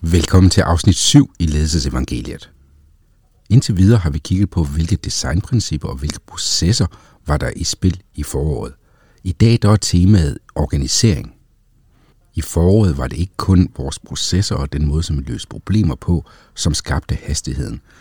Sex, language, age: male, Danish, 60-79